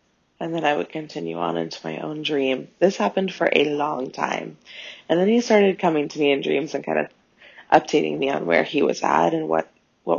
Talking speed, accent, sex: 225 wpm, American, female